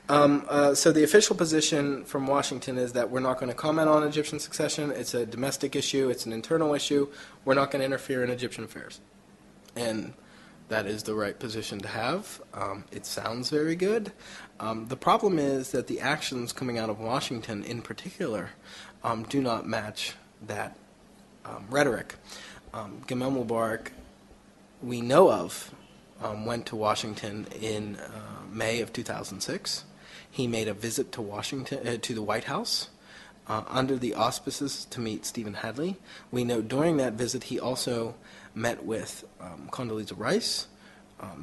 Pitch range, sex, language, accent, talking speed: 110-145 Hz, male, English, American, 165 wpm